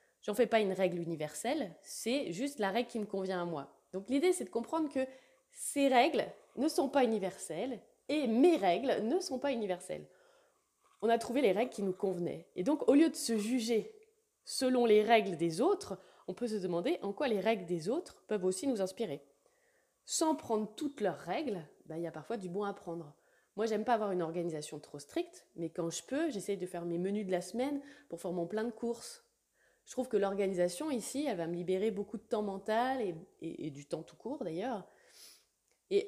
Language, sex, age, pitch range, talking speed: French, female, 20-39, 185-280 Hz, 215 wpm